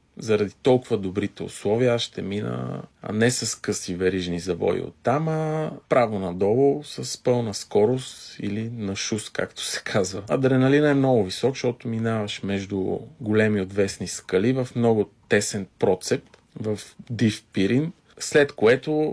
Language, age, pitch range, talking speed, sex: Bulgarian, 40-59, 100-135 Hz, 140 wpm, male